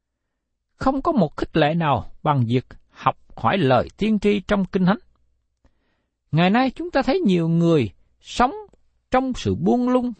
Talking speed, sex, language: 165 wpm, male, Vietnamese